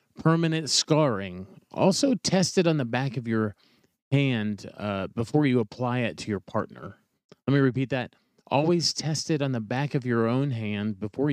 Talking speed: 180 wpm